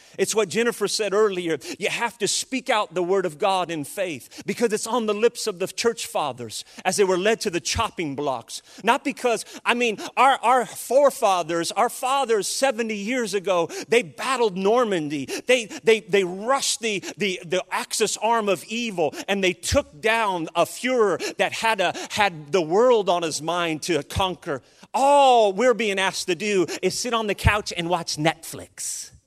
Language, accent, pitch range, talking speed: English, American, 180-235 Hz, 185 wpm